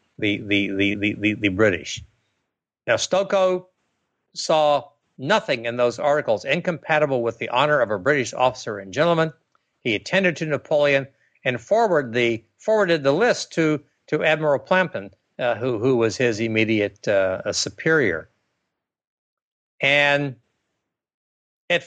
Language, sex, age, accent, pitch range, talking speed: English, male, 60-79, American, 105-170 Hz, 125 wpm